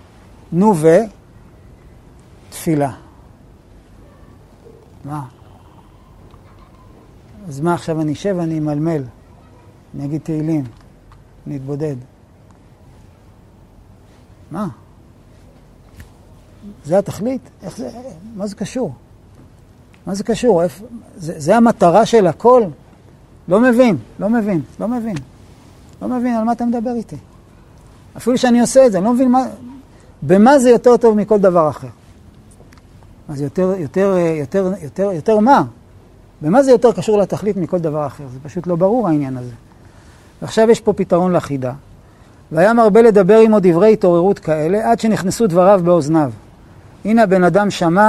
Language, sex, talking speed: Hebrew, male, 130 wpm